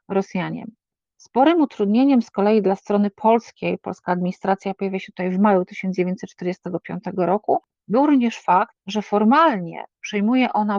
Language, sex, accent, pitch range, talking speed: Polish, female, native, 190-225 Hz, 135 wpm